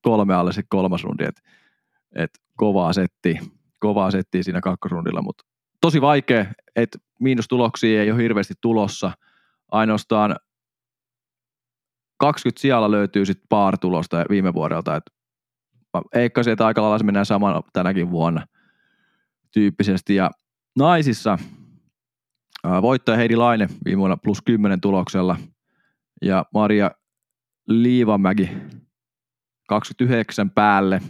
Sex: male